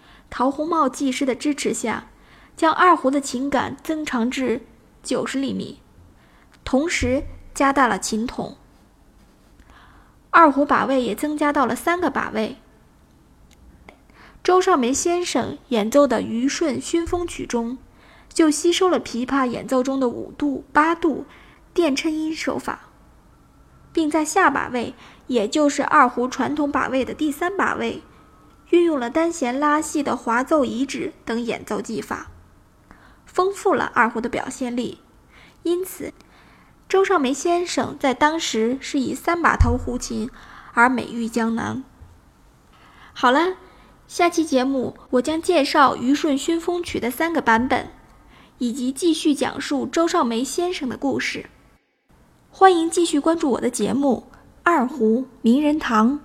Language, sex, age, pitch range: Chinese, female, 20-39, 245-325 Hz